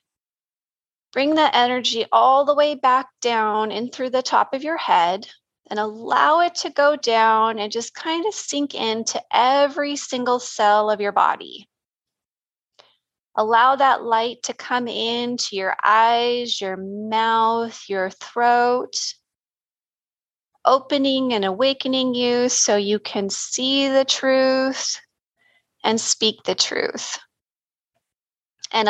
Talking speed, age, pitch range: 125 wpm, 30-49, 215-270 Hz